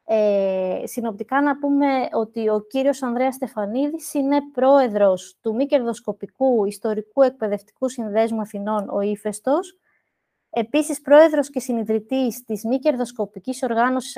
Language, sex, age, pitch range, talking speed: Greek, female, 20-39, 225-280 Hz, 120 wpm